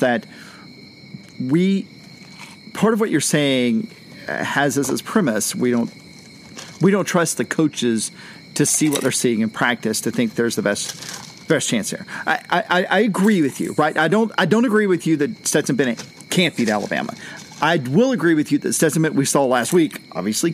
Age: 40-59